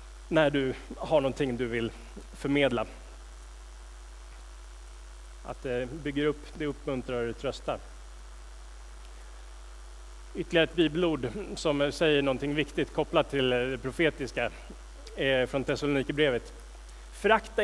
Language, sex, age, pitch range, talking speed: Swedish, male, 30-49, 125-160 Hz, 105 wpm